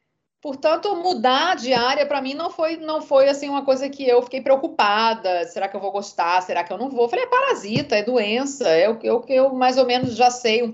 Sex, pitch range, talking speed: female, 195-275 Hz, 225 wpm